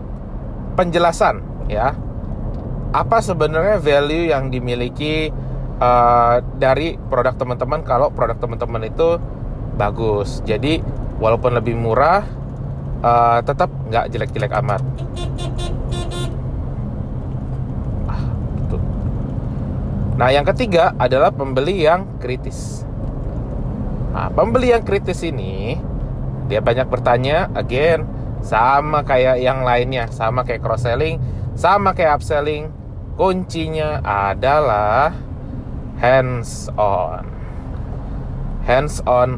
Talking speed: 85 wpm